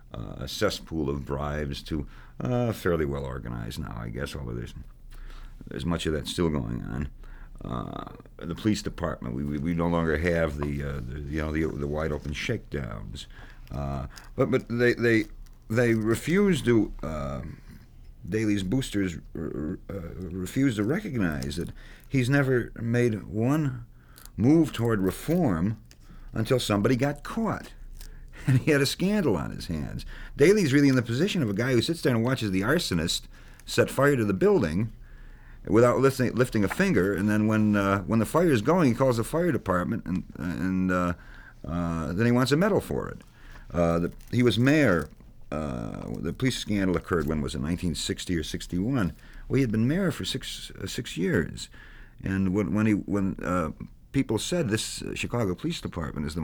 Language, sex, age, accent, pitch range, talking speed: English, male, 50-69, American, 80-120 Hz, 180 wpm